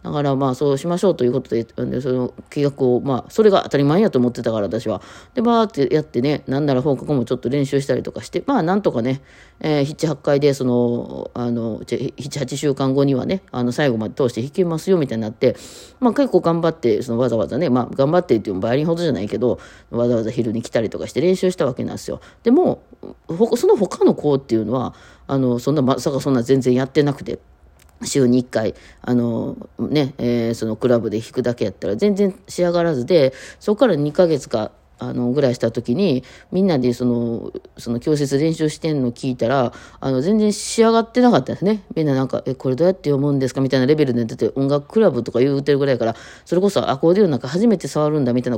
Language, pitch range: Japanese, 125-175 Hz